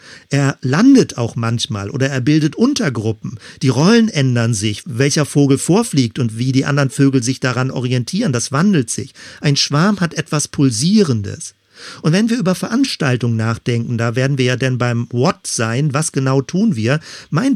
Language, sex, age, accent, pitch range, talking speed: German, male, 50-69, German, 125-155 Hz, 170 wpm